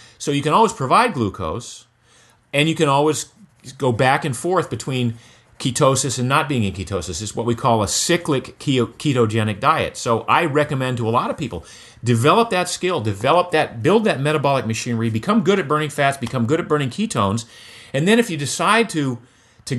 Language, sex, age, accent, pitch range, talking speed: English, male, 40-59, American, 115-140 Hz, 195 wpm